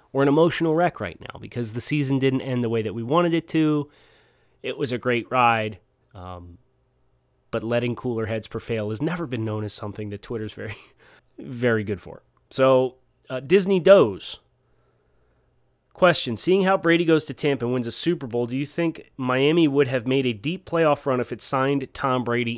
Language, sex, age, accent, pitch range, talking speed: English, male, 30-49, American, 115-140 Hz, 195 wpm